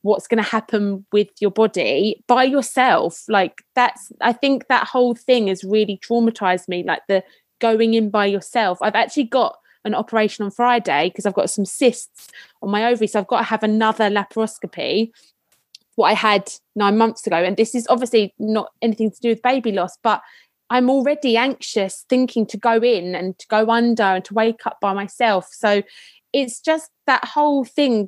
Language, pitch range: English, 205-245 Hz